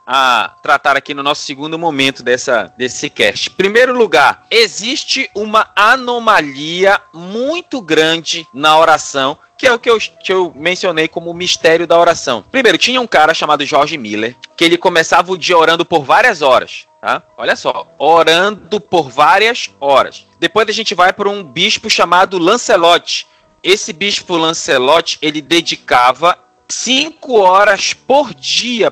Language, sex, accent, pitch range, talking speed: Portuguese, male, Brazilian, 155-220 Hz, 150 wpm